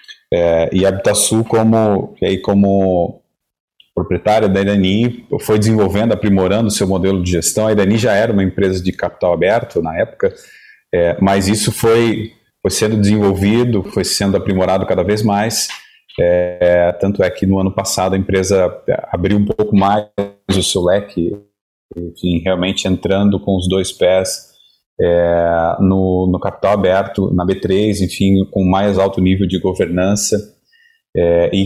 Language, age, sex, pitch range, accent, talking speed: Portuguese, 30-49, male, 95-105 Hz, Brazilian, 155 wpm